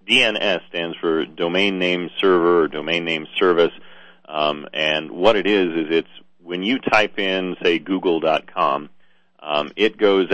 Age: 40-59